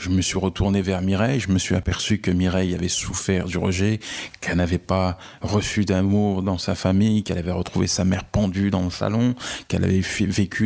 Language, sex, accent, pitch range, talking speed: French, male, French, 90-105 Hz, 210 wpm